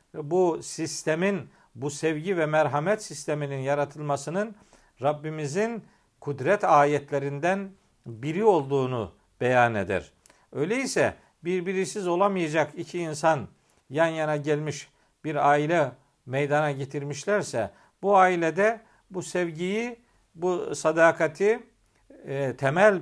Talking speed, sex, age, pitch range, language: 90 wpm, male, 50-69, 140-190 Hz, Turkish